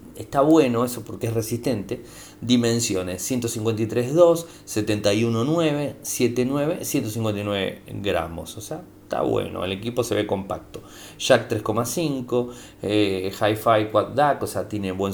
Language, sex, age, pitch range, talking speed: Spanish, male, 30-49, 100-130 Hz, 125 wpm